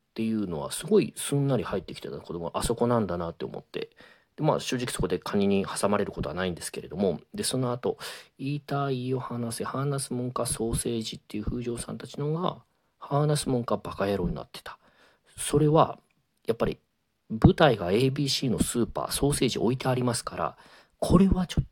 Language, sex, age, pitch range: Japanese, male, 40-59, 90-130 Hz